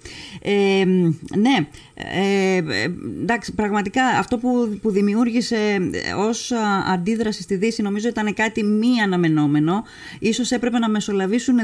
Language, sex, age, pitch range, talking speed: Greek, female, 20-39, 175-220 Hz, 115 wpm